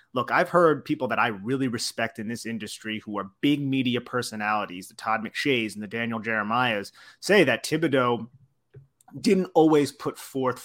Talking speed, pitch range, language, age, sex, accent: 170 wpm, 120-145 Hz, English, 30-49, male, American